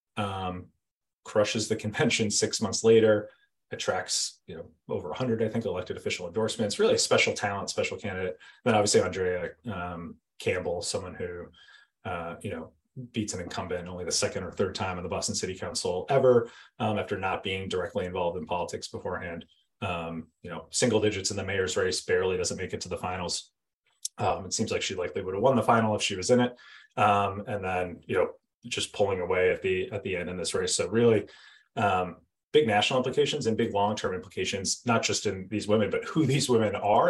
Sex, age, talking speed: male, 30-49, 205 wpm